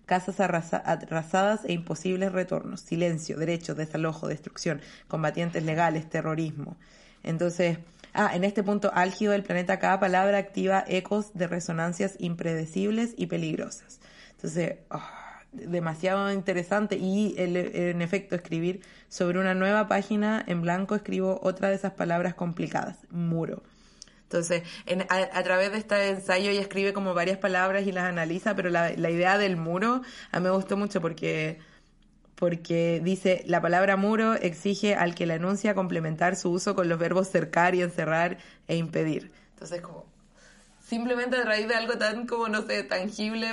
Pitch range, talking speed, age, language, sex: 175-205 Hz, 150 wpm, 20-39, Spanish, female